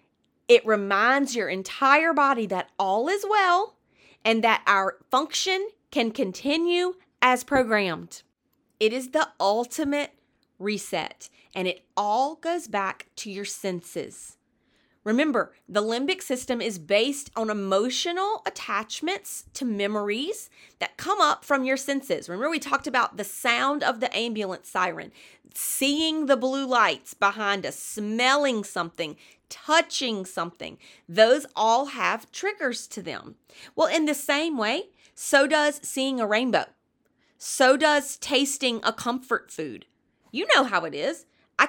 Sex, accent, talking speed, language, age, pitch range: female, American, 135 wpm, English, 30-49, 210-295 Hz